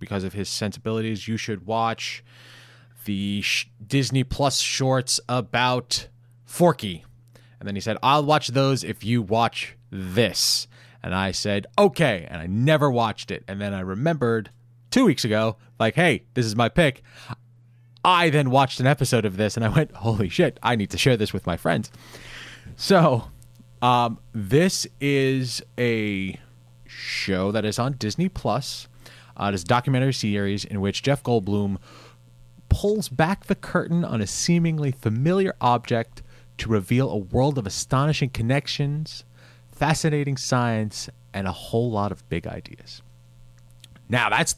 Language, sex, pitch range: English, male, 100-135 Hz